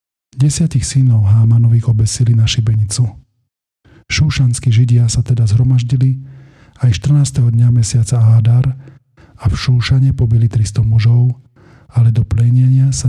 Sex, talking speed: male, 120 wpm